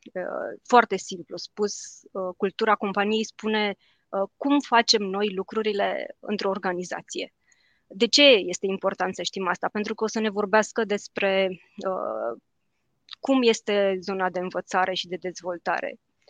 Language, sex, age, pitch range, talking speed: Romanian, female, 20-39, 190-225 Hz, 125 wpm